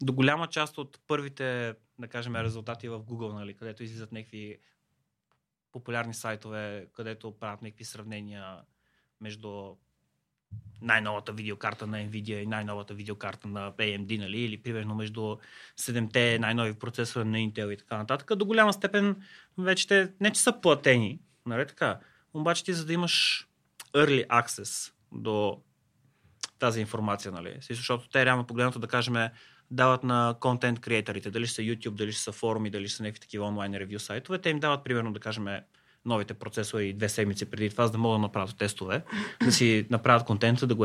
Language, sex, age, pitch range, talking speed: Bulgarian, male, 30-49, 105-130 Hz, 165 wpm